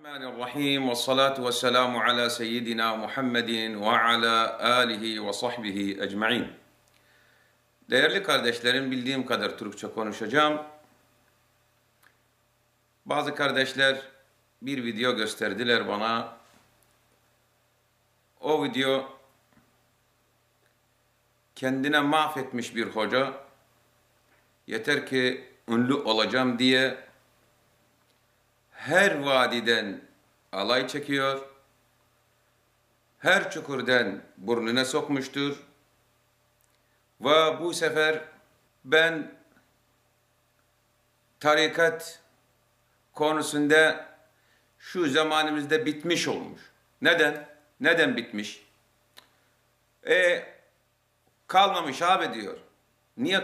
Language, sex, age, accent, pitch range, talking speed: Turkish, male, 50-69, native, 120-145 Hz, 70 wpm